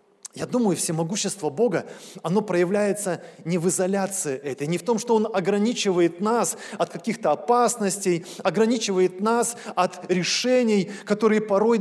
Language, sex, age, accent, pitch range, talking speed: Russian, male, 20-39, native, 180-235 Hz, 130 wpm